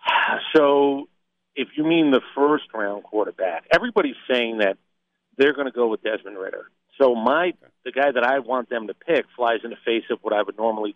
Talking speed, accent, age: 195 wpm, American, 50-69